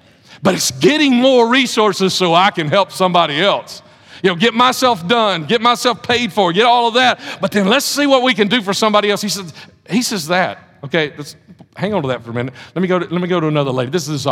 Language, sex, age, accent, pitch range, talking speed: English, male, 50-69, American, 135-200 Hz, 255 wpm